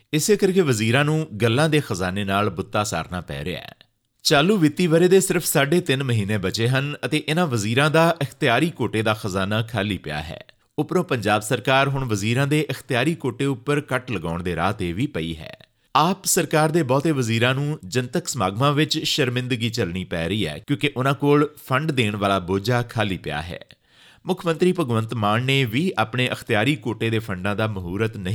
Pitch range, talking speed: 110-150 Hz, 165 wpm